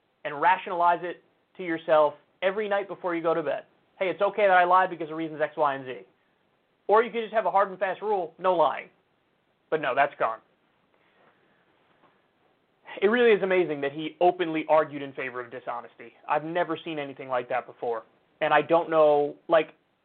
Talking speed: 195 wpm